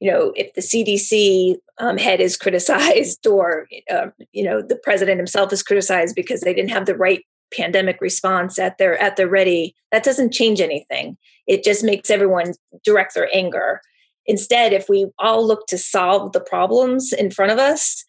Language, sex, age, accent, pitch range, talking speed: English, female, 30-49, American, 190-240 Hz, 180 wpm